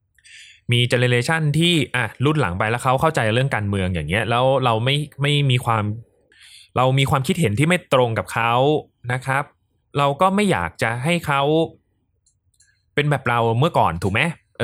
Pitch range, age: 105-150 Hz, 20-39